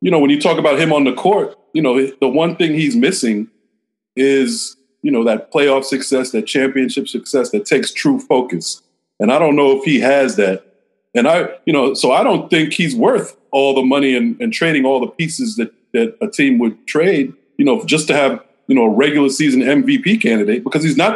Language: English